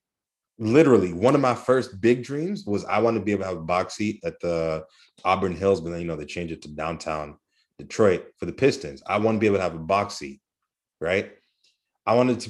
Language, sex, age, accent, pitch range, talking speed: English, male, 30-49, American, 85-110 Hz, 235 wpm